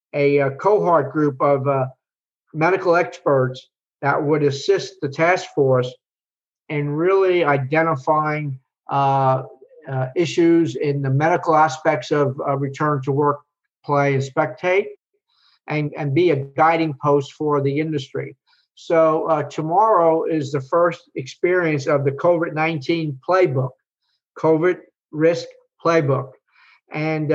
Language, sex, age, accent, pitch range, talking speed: English, male, 50-69, American, 145-175 Hz, 125 wpm